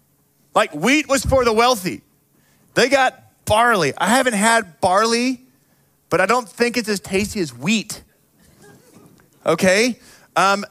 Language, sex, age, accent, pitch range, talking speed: English, male, 30-49, American, 205-260 Hz, 135 wpm